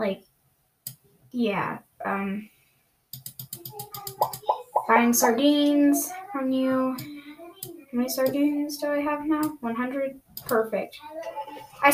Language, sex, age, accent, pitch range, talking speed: English, female, 10-29, American, 225-320 Hz, 85 wpm